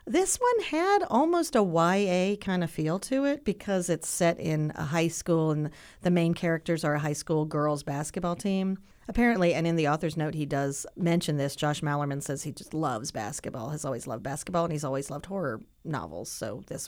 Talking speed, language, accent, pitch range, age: 205 wpm, English, American, 150-195 Hz, 40-59